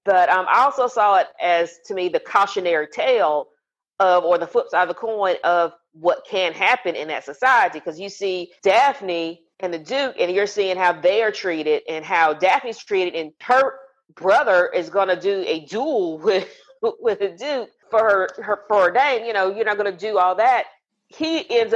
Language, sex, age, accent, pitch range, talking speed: English, female, 40-59, American, 190-255 Hz, 205 wpm